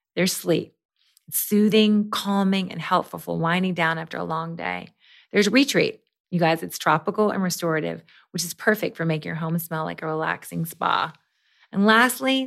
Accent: American